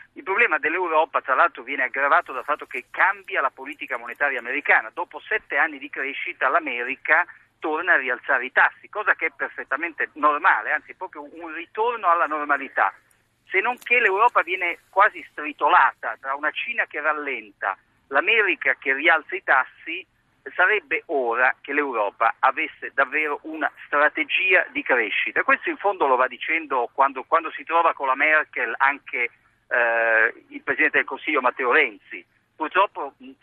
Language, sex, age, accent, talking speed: Italian, male, 50-69, native, 155 wpm